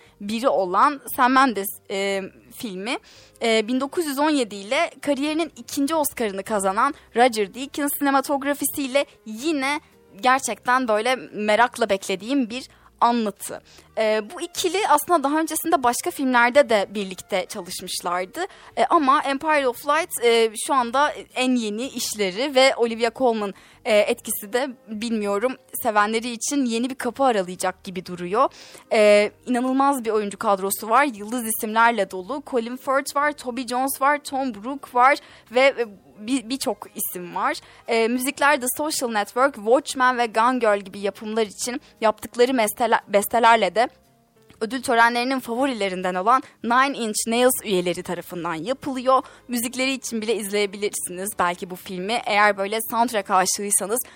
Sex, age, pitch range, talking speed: female, 10-29, 210-270 Hz, 135 wpm